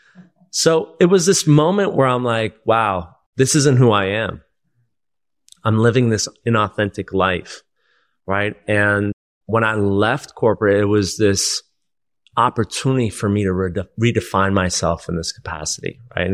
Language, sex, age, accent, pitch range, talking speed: English, male, 30-49, American, 100-120 Hz, 145 wpm